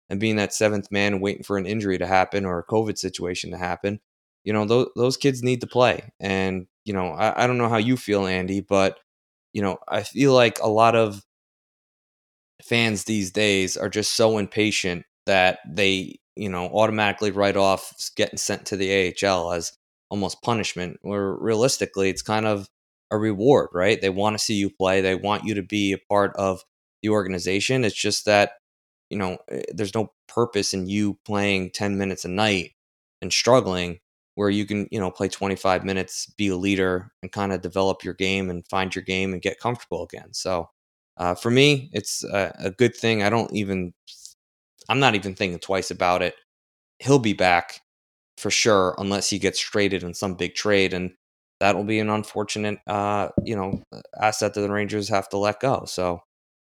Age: 20-39